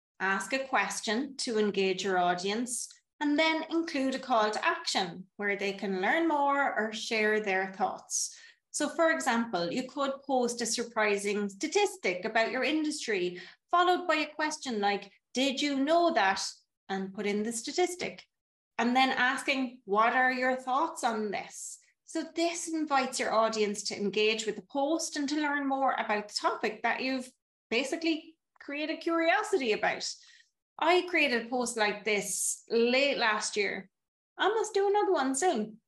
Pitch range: 215-310 Hz